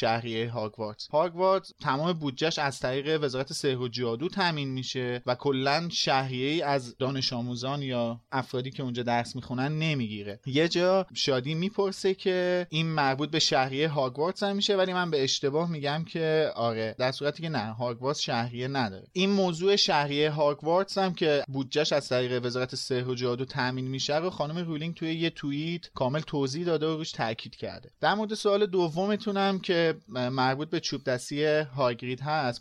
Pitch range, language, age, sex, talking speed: 125-165 Hz, Persian, 30-49, male, 160 wpm